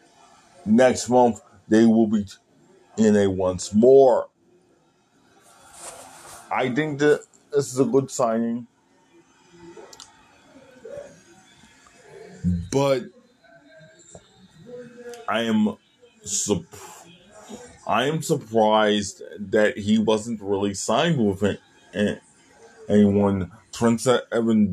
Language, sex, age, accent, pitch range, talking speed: English, male, 20-39, American, 105-160 Hz, 80 wpm